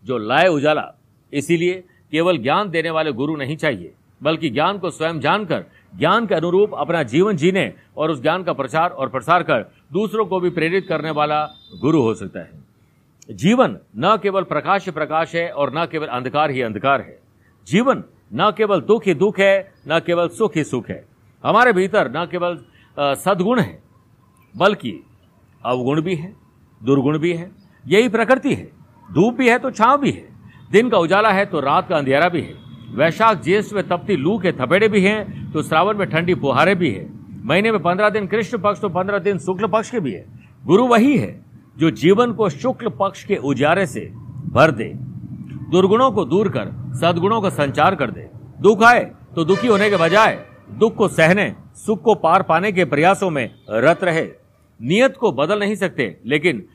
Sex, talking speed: male, 165 wpm